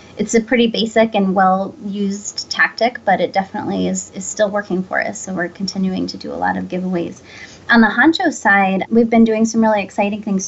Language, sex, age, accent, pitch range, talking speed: English, female, 20-39, American, 190-220 Hz, 210 wpm